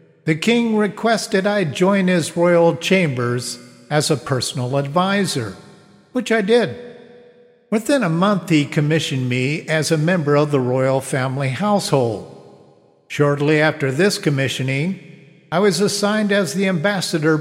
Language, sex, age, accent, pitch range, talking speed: English, male, 50-69, American, 135-190 Hz, 135 wpm